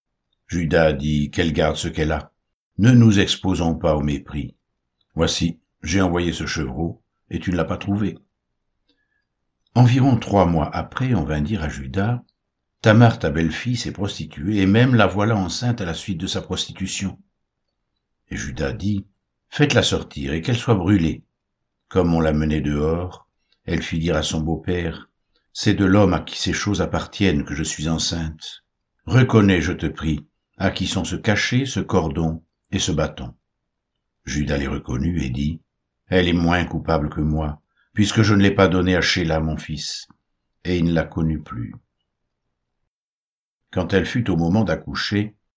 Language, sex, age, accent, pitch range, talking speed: French, male, 60-79, French, 80-100 Hz, 170 wpm